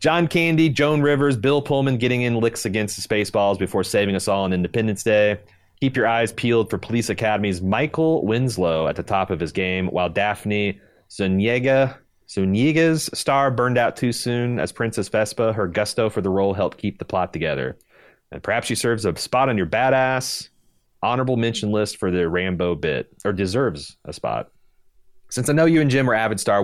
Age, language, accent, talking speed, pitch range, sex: 30-49, English, American, 190 wpm, 90-120 Hz, male